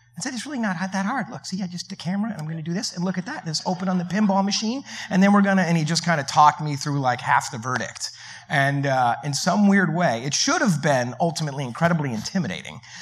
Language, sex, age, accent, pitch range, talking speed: English, male, 30-49, American, 135-185 Hz, 265 wpm